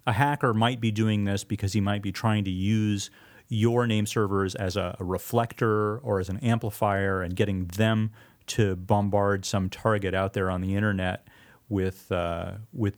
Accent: American